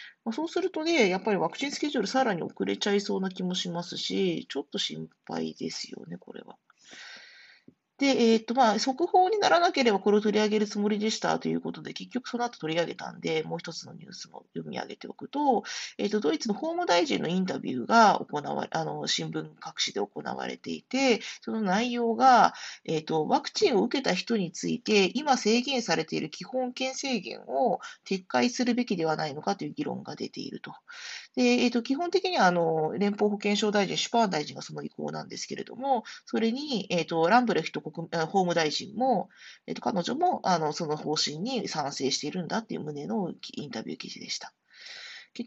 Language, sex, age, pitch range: Japanese, female, 40-59, 165-250 Hz